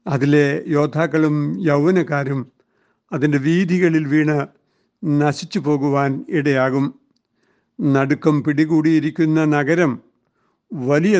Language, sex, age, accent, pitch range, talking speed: Malayalam, male, 60-79, native, 145-175 Hz, 70 wpm